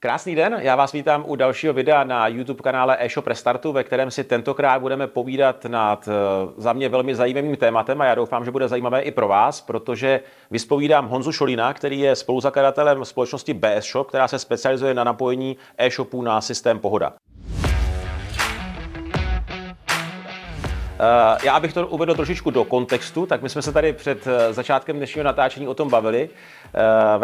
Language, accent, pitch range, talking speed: Czech, native, 120-140 Hz, 160 wpm